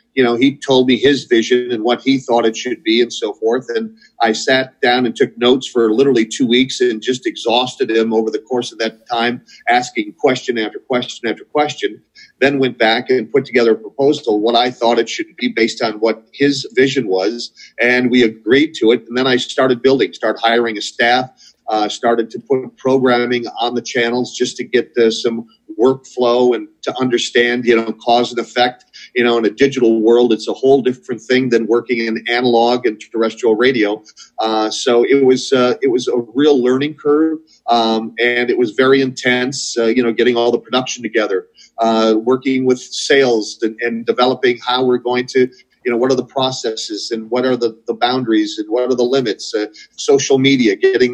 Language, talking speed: English, 205 wpm